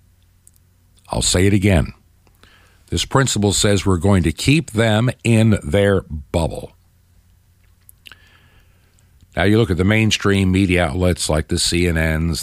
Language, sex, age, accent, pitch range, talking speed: English, male, 60-79, American, 90-110 Hz, 125 wpm